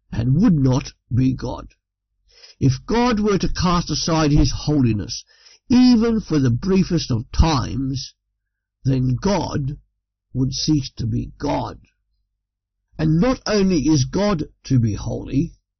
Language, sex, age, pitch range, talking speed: English, male, 60-79, 120-170 Hz, 130 wpm